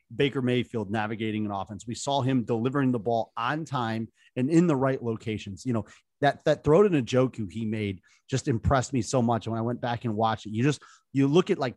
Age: 30-49